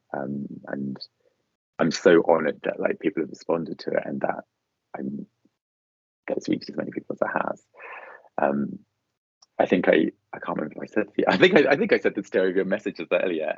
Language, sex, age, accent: English, male, 20-39, British